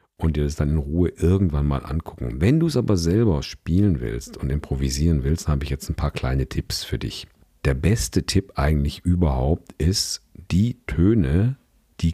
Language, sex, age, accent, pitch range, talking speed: German, male, 50-69, German, 70-95 Hz, 190 wpm